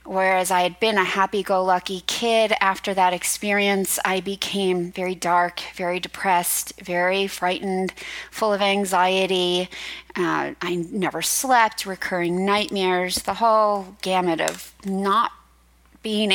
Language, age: English, 30-49